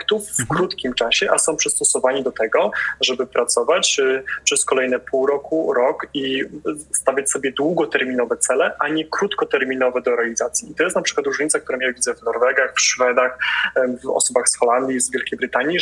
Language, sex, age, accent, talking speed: Polish, male, 20-39, native, 170 wpm